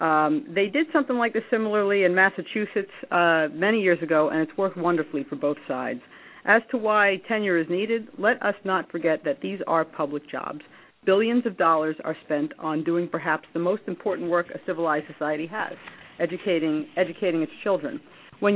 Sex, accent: female, American